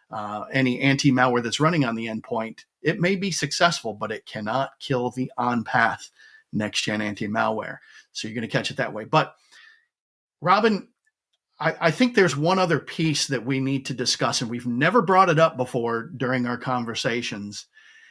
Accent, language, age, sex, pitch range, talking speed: American, English, 40-59, male, 125-165 Hz, 170 wpm